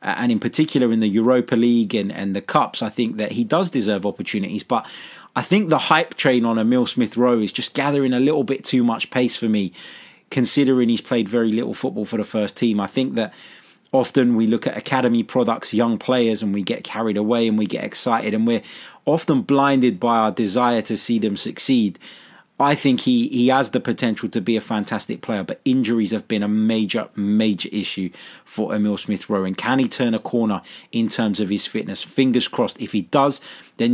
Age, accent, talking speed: 20-39, British, 210 wpm